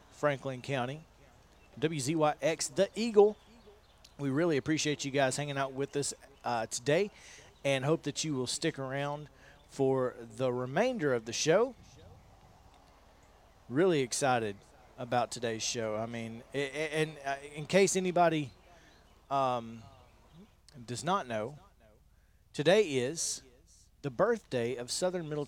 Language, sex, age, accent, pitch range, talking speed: English, male, 40-59, American, 120-165 Hz, 120 wpm